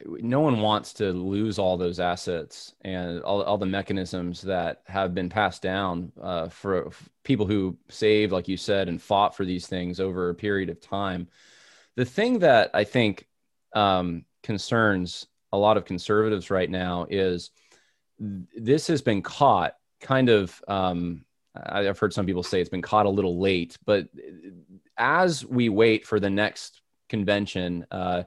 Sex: male